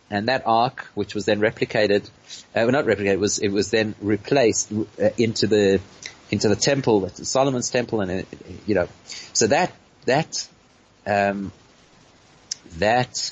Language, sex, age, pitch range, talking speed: English, male, 30-49, 100-125 Hz, 155 wpm